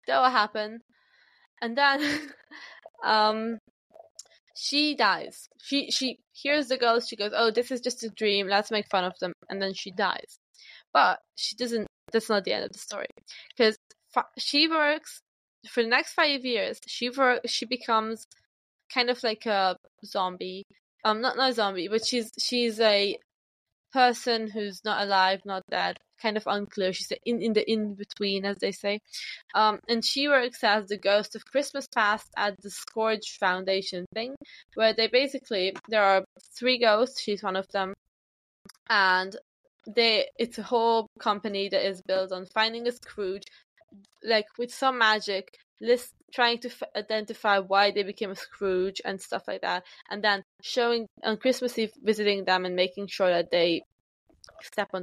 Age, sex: 10-29, female